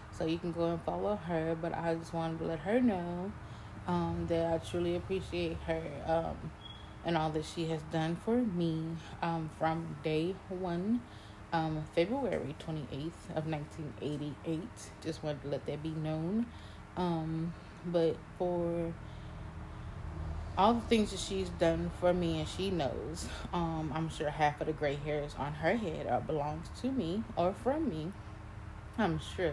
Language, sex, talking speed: English, female, 165 wpm